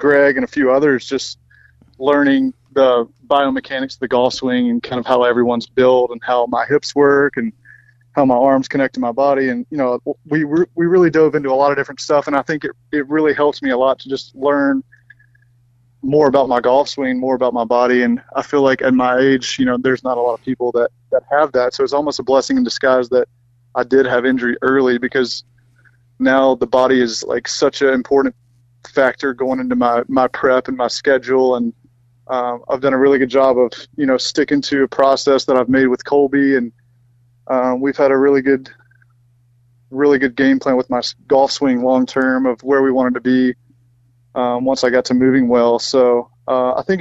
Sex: male